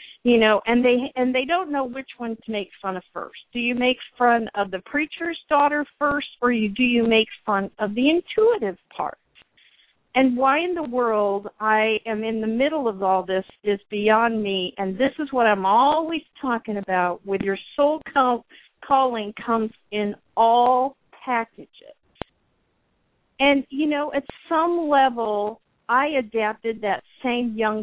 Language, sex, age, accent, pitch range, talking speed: English, female, 50-69, American, 200-270 Hz, 170 wpm